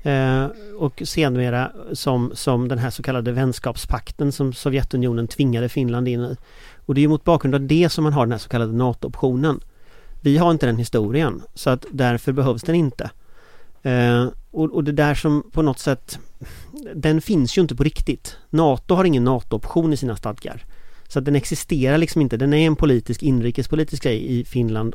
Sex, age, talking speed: male, 40-59, 190 wpm